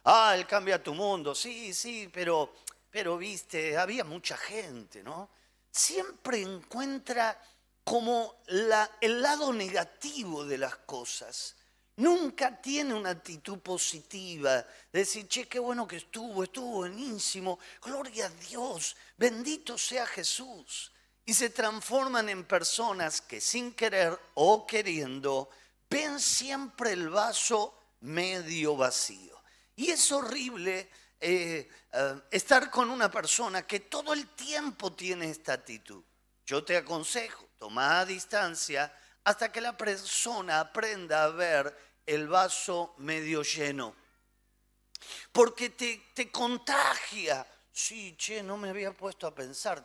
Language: Spanish